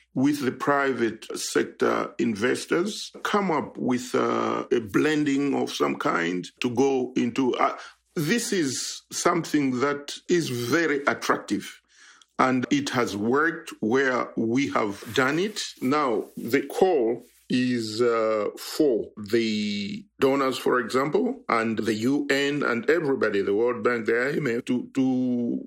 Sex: male